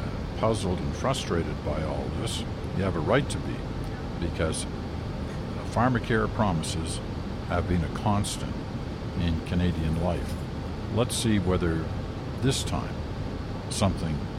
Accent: American